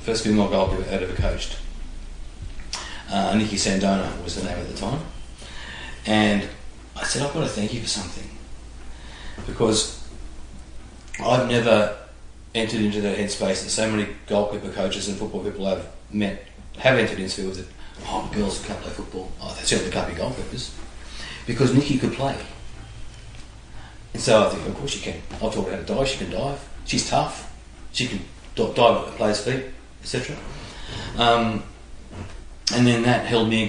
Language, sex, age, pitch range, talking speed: English, male, 40-59, 95-110 Hz, 170 wpm